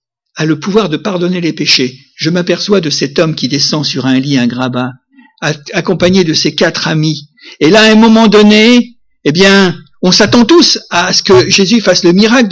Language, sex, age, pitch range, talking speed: French, male, 60-79, 145-215 Hz, 200 wpm